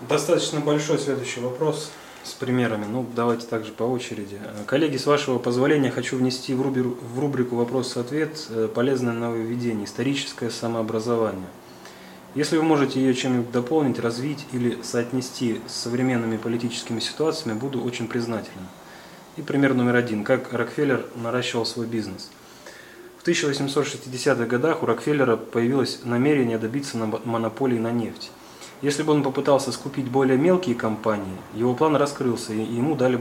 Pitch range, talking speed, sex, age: 115-135 Hz, 135 wpm, male, 20-39